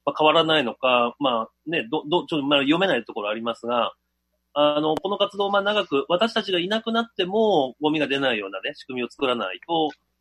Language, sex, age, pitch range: Japanese, male, 30-49, 120-175 Hz